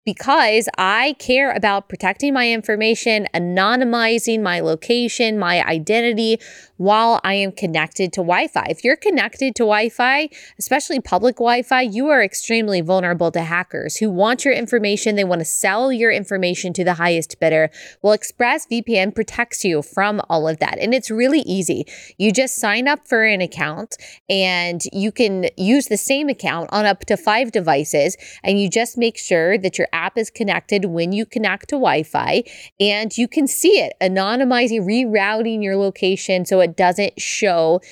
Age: 20-39